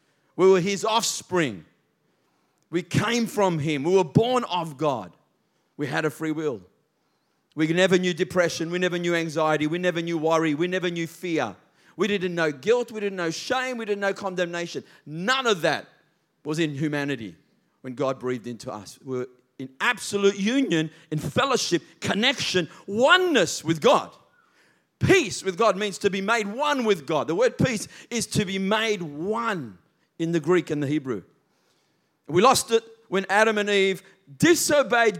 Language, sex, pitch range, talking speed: English, male, 165-225 Hz, 170 wpm